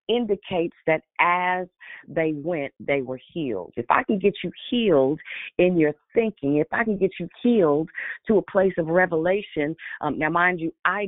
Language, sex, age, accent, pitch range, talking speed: English, female, 40-59, American, 150-185 Hz, 180 wpm